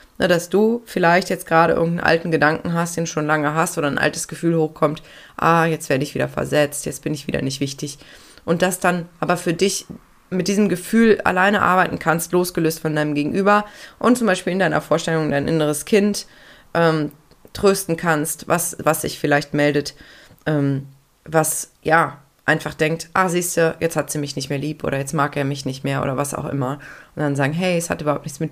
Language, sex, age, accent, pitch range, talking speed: German, female, 20-39, German, 145-180 Hz, 205 wpm